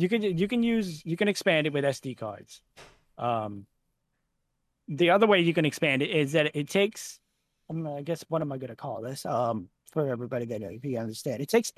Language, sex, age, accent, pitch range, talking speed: English, male, 30-49, American, 140-190 Hz, 220 wpm